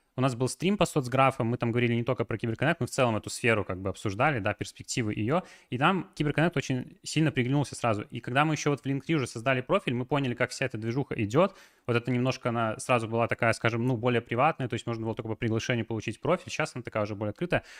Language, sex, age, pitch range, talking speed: Russian, male, 20-39, 115-145 Hz, 250 wpm